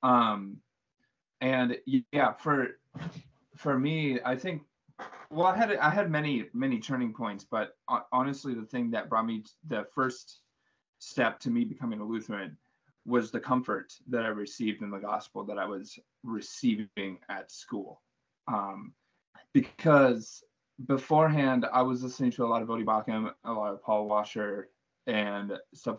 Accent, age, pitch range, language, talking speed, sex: American, 20-39, 110-140 Hz, English, 150 wpm, male